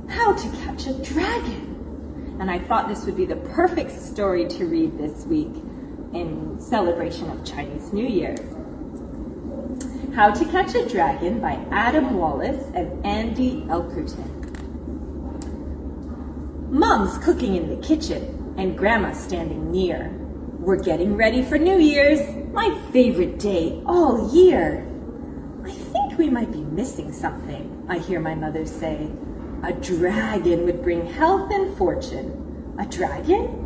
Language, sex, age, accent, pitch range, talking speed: English, female, 30-49, American, 240-350 Hz, 135 wpm